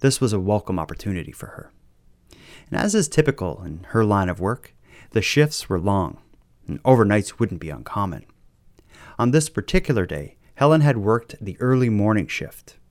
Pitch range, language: 100-135 Hz, English